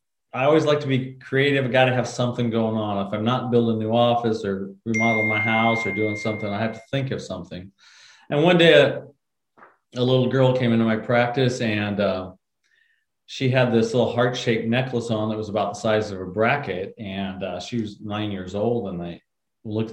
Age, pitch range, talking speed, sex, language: 40-59, 105-130 Hz, 215 wpm, male, English